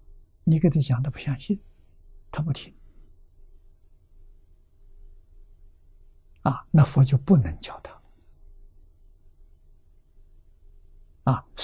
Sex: male